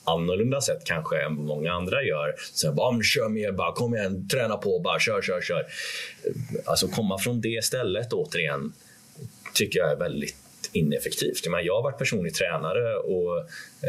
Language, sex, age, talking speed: Swedish, male, 30-49, 175 wpm